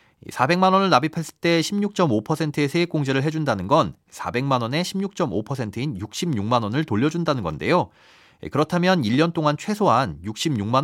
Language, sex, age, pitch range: Korean, male, 40-59, 125-175 Hz